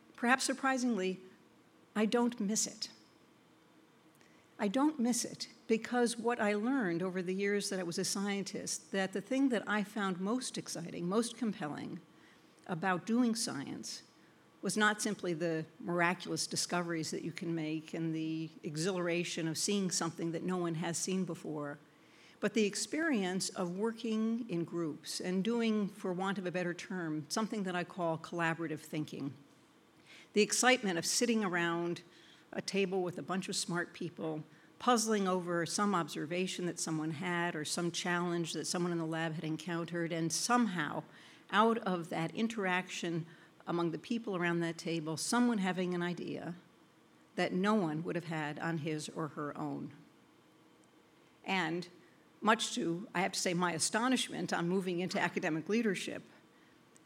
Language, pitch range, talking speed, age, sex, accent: English, 165-210 Hz, 155 wpm, 60-79, female, American